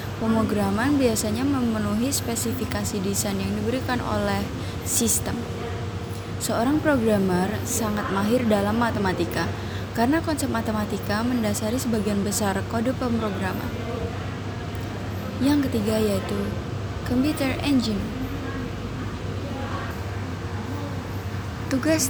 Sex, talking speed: female, 80 wpm